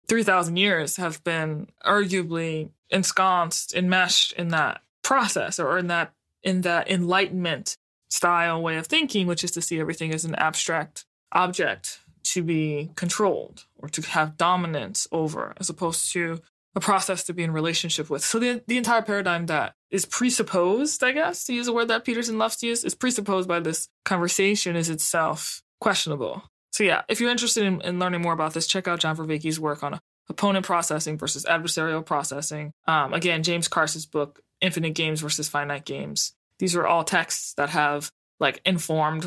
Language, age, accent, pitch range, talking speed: English, 20-39, American, 160-190 Hz, 175 wpm